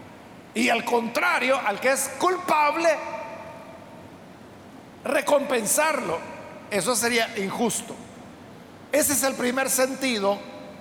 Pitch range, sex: 240-295 Hz, male